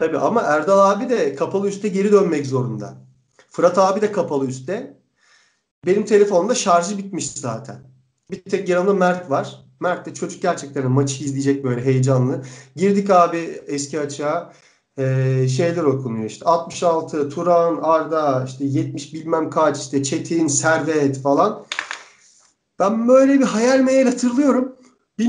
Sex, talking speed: male, 140 wpm